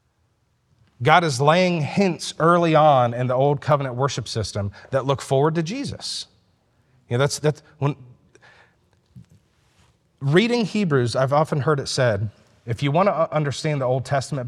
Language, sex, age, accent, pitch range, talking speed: English, male, 40-59, American, 120-165 Hz, 155 wpm